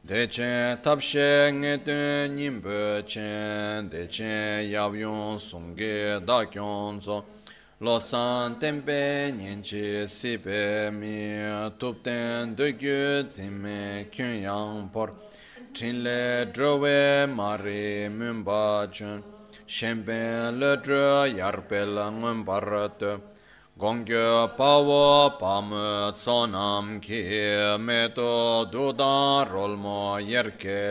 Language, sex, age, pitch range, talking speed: Italian, male, 30-49, 105-125 Hz, 95 wpm